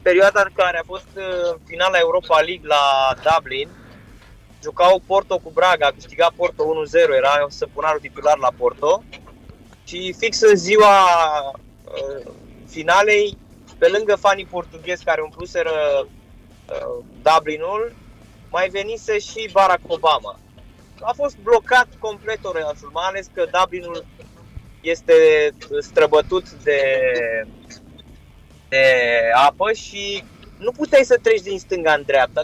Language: Romanian